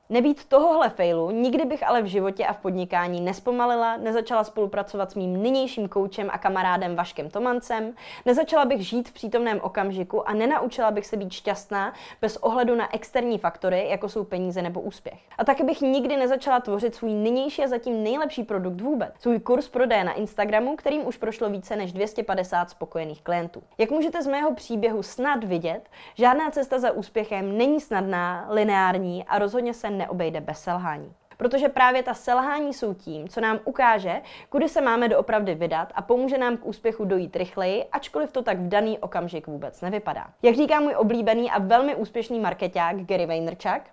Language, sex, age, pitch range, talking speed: Czech, female, 20-39, 190-245 Hz, 175 wpm